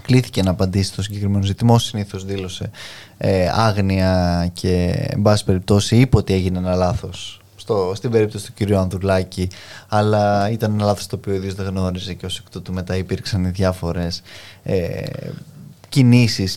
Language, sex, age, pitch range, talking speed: Greek, male, 20-39, 100-130 Hz, 150 wpm